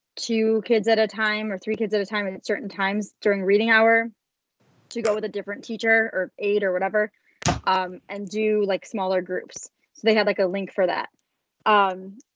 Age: 20-39